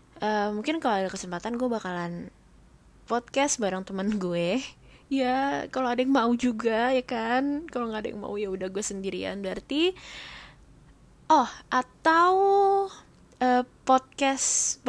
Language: Indonesian